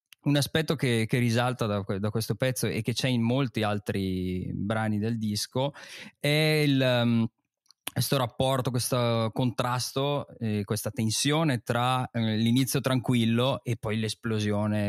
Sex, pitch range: male, 110-130 Hz